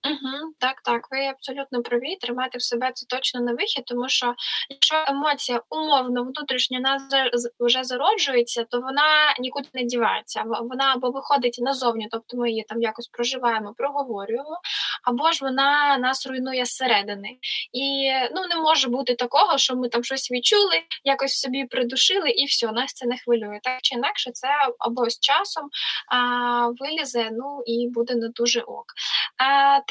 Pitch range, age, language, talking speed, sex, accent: 245-290 Hz, 10-29, Ukrainian, 165 wpm, female, native